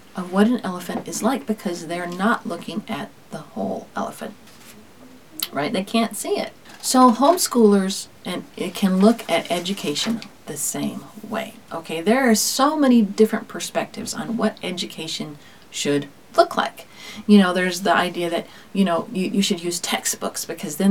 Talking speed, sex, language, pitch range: 165 wpm, female, English, 185-240 Hz